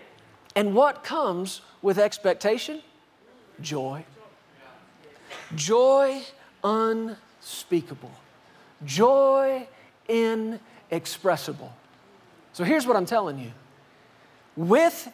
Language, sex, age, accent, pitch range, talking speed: English, male, 40-59, American, 165-225 Hz, 65 wpm